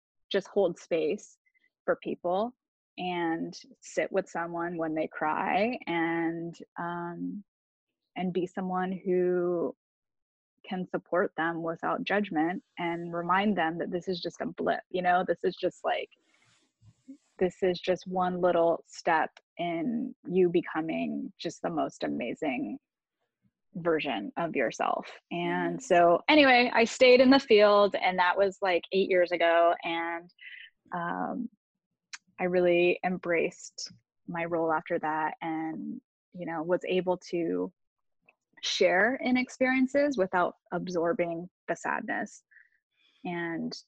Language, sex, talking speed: English, female, 125 wpm